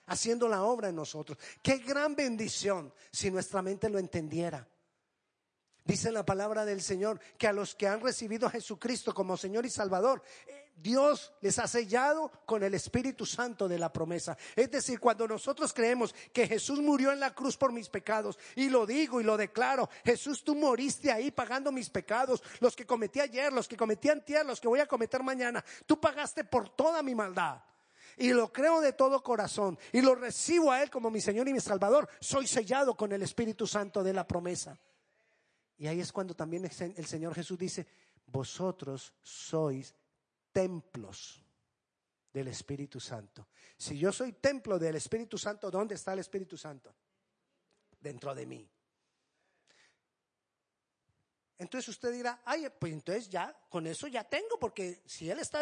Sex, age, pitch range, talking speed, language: male, 40-59, 185-260 Hz, 175 wpm, Spanish